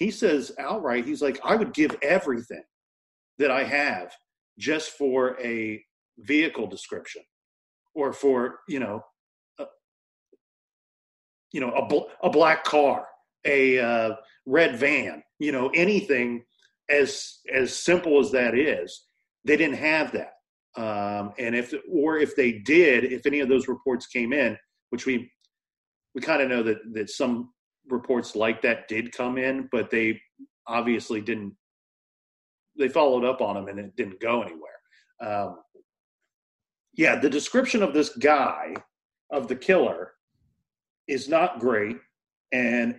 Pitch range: 120-155 Hz